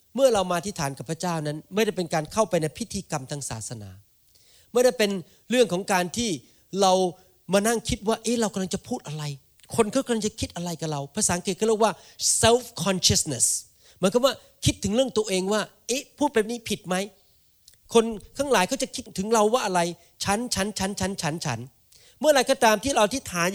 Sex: male